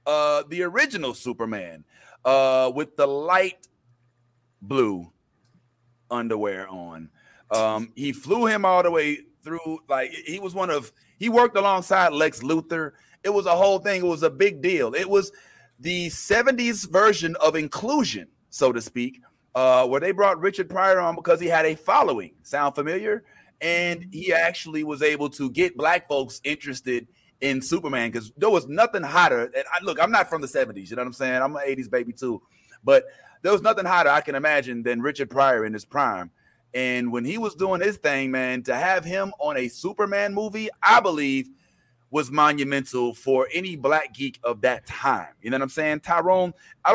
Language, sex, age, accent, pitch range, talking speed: English, male, 30-49, American, 130-190 Hz, 185 wpm